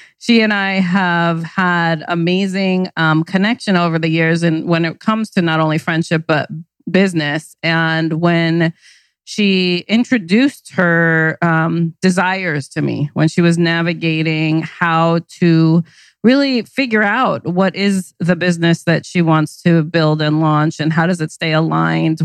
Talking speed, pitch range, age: 150 wpm, 160-185 Hz, 30-49